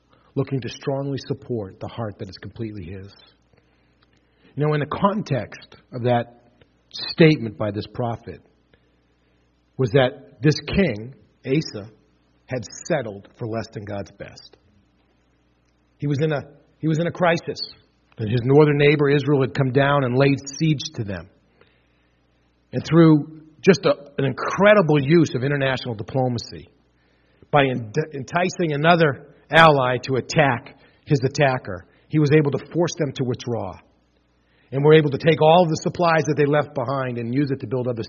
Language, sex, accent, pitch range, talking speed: English, male, American, 110-155 Hz, 155 wpm